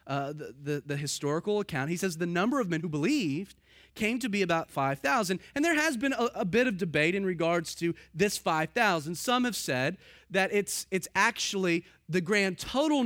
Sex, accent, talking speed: male, American, 200 wpm